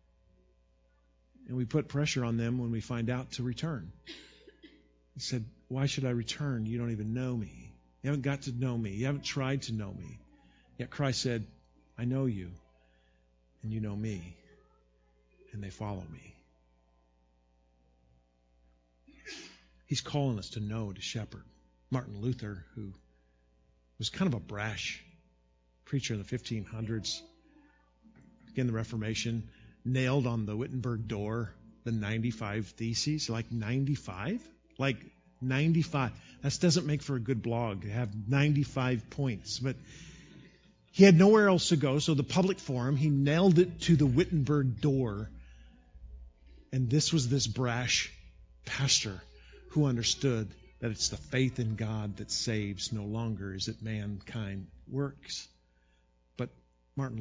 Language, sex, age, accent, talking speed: English, male, 50-69, American, 145 wpm